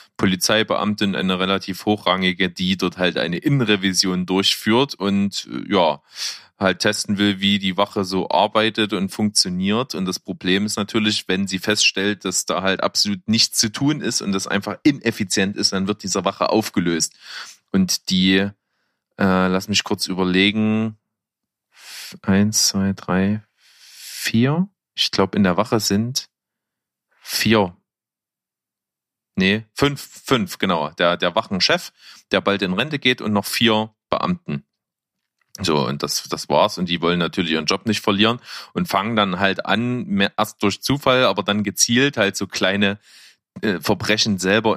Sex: male